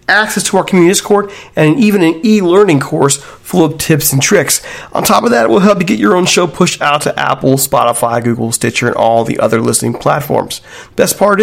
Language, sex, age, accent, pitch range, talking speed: English, male, 40-59, American, 130-175 Hz, 220 wpm